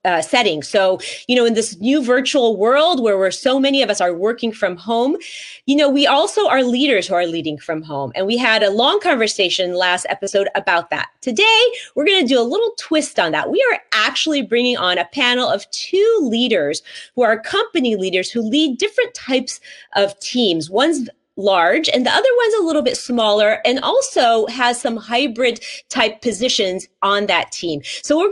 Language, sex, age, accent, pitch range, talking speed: English, female, 30-49, American, 205-300 Hz, 195 wpm